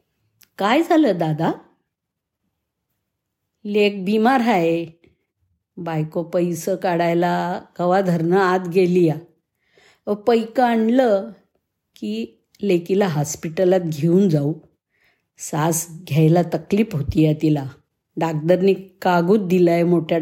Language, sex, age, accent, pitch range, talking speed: Marathi, female, 50-69, native, 165-210 Hz, 75 wpm